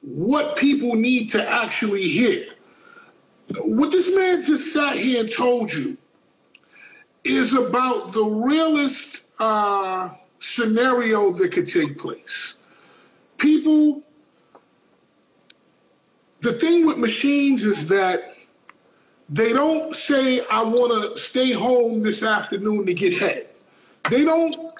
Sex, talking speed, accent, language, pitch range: male, 115 wpm, American, English, 235-315 Hz